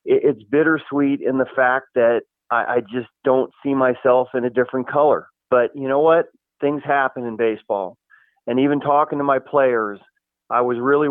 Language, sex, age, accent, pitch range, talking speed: English, male, 40-59, American, 125-140 Hz, 180 wpm